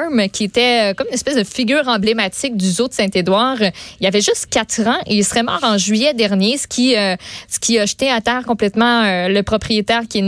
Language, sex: French, female